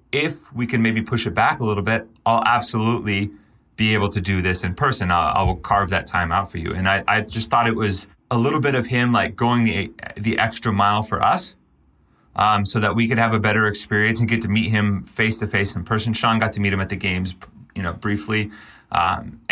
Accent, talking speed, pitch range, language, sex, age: American, 240 wpm, 90-110 Hz, English, male, 30-49